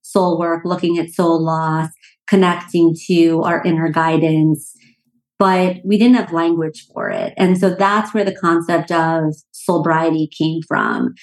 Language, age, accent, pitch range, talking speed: English, 30-49, American, 165-195 Hz, 150 wpm